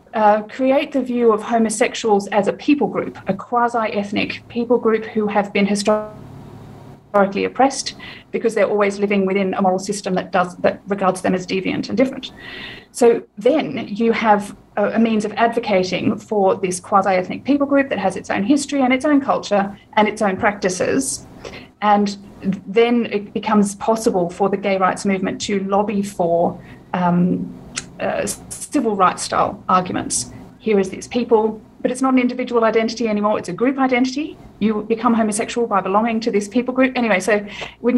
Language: English